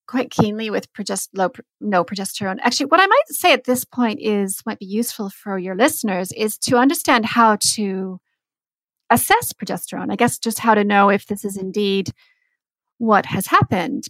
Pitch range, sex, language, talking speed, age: 190-255 Hz, female, English, 175 wpm, 30-49